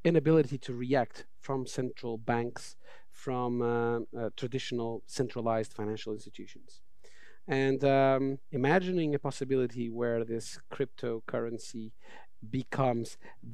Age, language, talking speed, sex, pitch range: 40-59, English, 100 wpm, male, 115-145 Hz